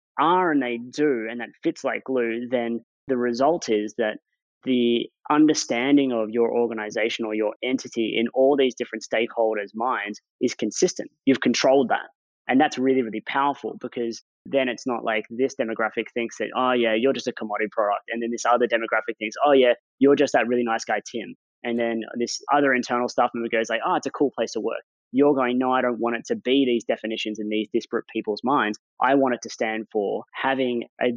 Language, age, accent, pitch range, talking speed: English, 20-39, Australian, 110-130 Hz, 210 wpm